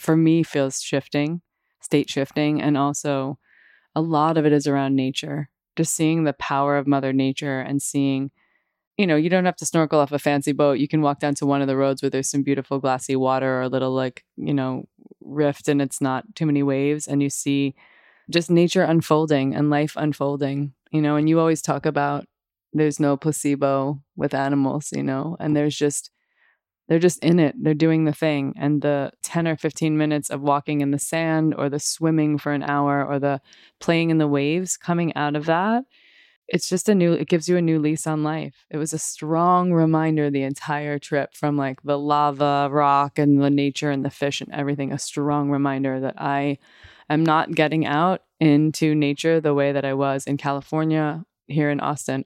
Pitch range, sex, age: 140-155 Hz, female, 20-39